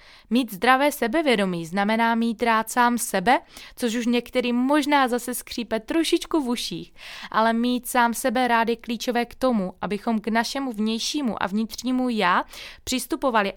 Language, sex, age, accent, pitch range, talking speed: Czech, female, 20-39, native, 185-240 Hz, 145 wpm